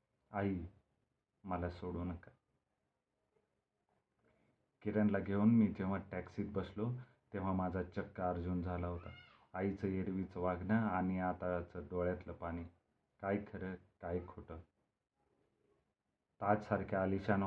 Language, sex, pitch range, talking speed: Marathi, male, 90-105 Hz, 100 wpm